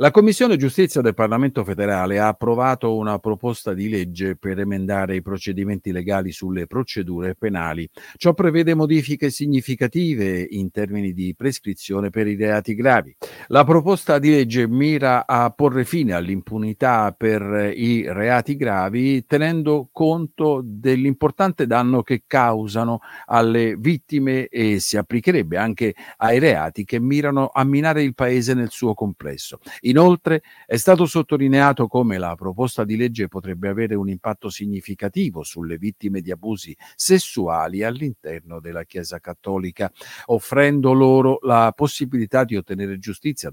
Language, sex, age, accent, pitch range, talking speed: Italian, male, 50-69, native, 100-135 Hz, 135 wpm